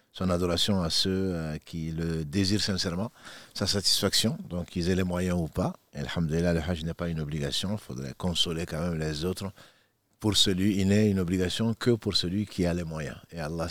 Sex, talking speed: male, 210 wpm